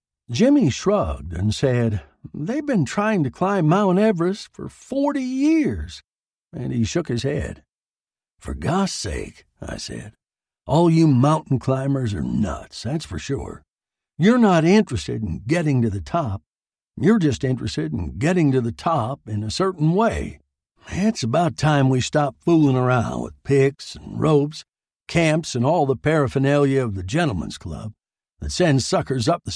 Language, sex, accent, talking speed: English, male, American, 160 wpm